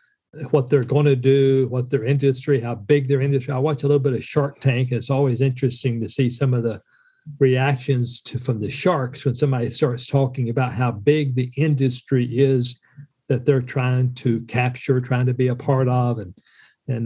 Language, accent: English, American